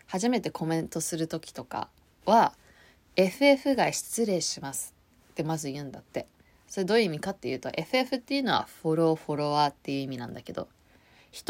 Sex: female